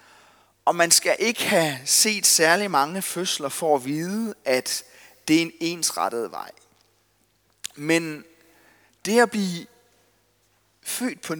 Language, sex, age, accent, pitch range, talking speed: Danish, male, 30-49, native, 125-190 Hz, 125 wpm